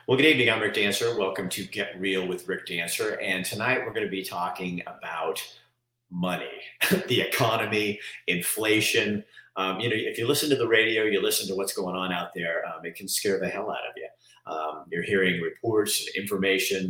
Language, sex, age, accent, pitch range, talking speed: English, male, 50-69, American, 95-130 Hz, 200 wpm